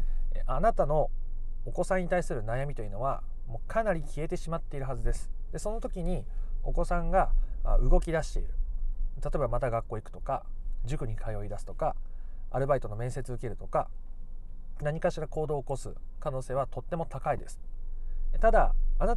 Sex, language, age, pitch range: male, Japanese, 40-59, 105-170 Hz